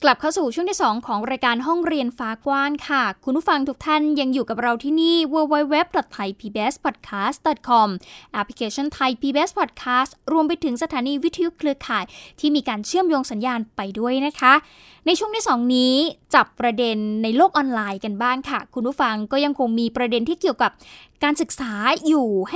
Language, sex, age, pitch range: Thai, female, 10-29, 240-310 Hz